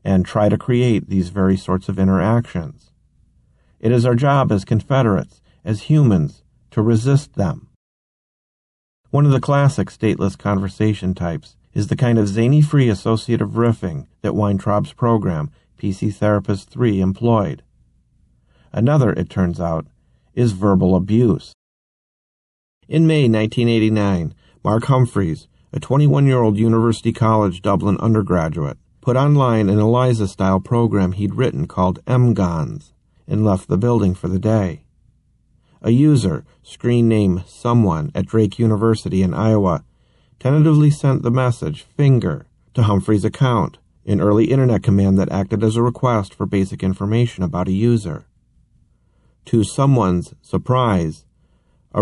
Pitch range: 95-125 Hz